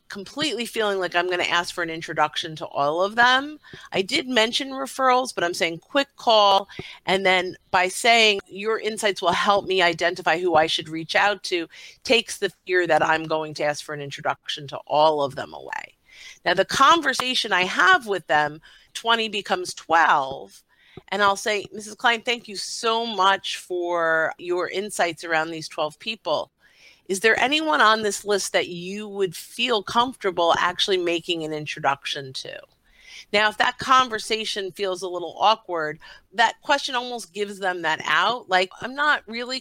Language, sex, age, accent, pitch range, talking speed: English, female, 50-69, American, 170-225 Hz, 175 wpm